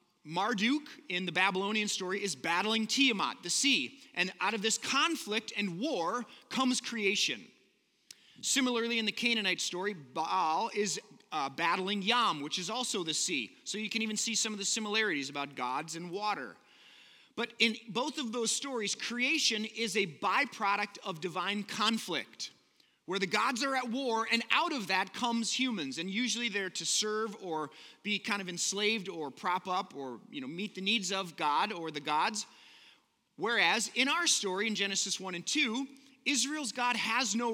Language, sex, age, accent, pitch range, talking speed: English, male, 30-49, American, 190-250 Hz, 175 wpm